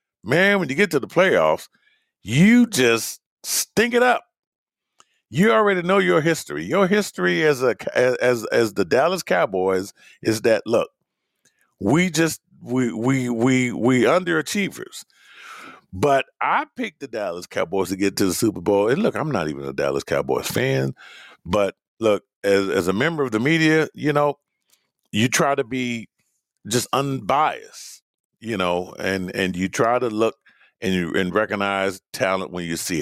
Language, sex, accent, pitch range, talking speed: English, male, American, 95-160 Hz, 165 wpm